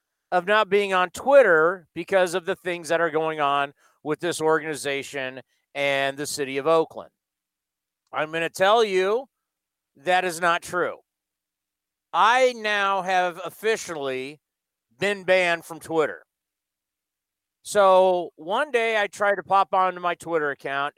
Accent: American